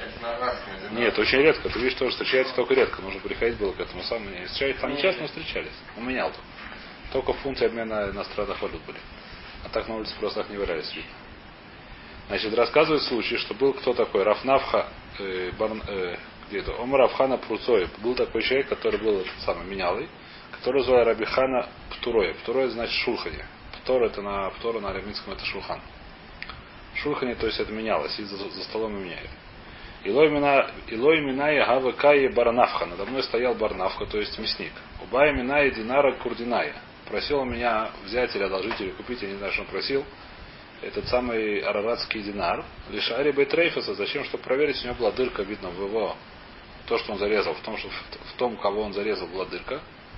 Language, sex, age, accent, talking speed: Russian, male, 30-49, native, 165 wpm